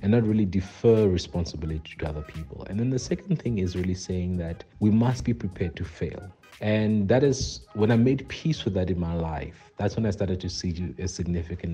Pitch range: 85-105 Hz